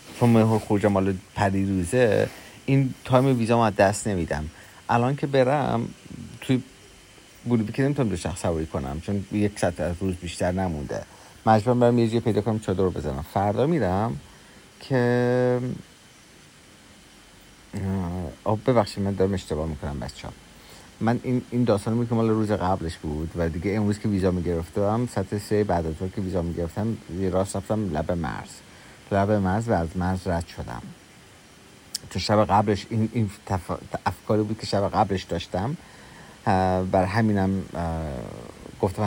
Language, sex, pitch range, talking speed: Persian, male, 95-125 Hz, 145 wpm